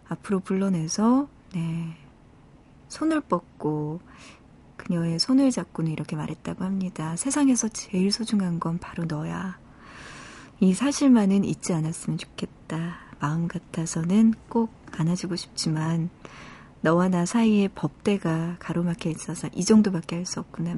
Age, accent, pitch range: 40-59, native, 165-215 Hz